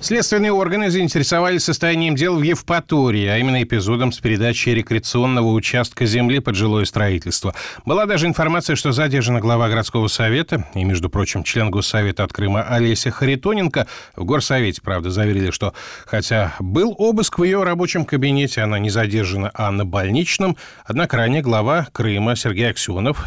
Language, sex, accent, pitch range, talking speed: Russian, male, native, 110-145 Hz, 150 wpm